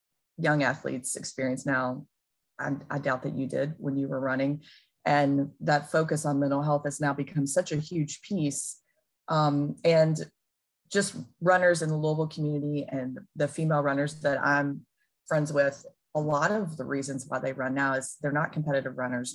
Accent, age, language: American, 20-39, English